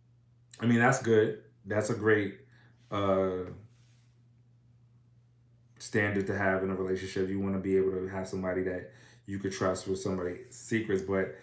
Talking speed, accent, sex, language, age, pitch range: 160 wpm, American, male, English, 30-49, 95-120 Hz